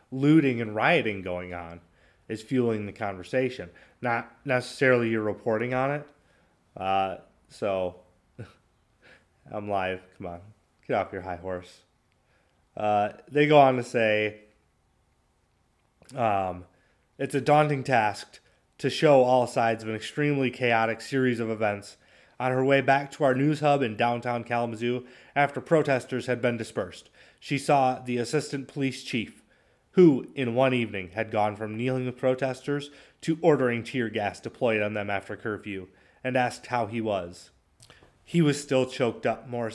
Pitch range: 105-130 Hz